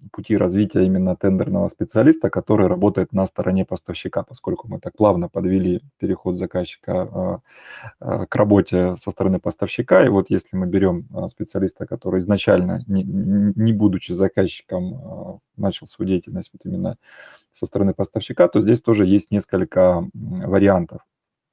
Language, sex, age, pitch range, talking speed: Russian, male, 30-49, 95-110 Hz, 130 wpm